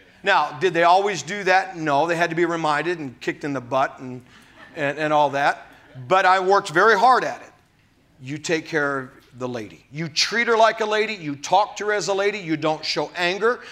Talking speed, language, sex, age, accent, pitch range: 225 wpm, English, male, 40-59, American, 155-215 Hz